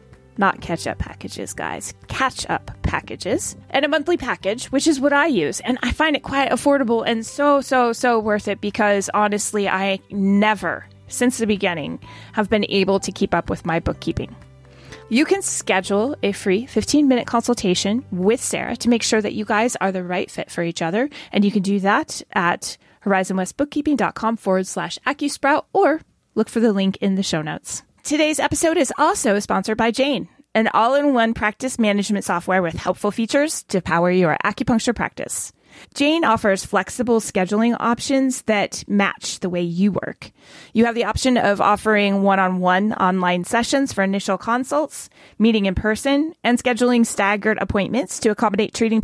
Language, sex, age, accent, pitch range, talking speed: English, female, 20-39, American, 195-250 Hz, 170 wpm